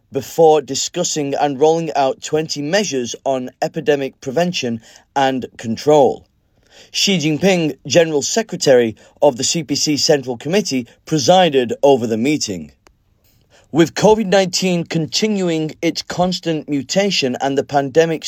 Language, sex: Chinese, male